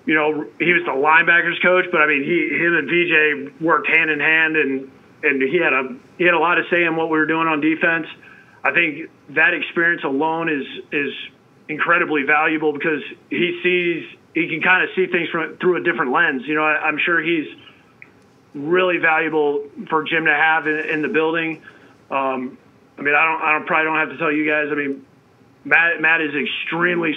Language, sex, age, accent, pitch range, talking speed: English, male, 30-49, American, 150-170 Hz, 210 wpm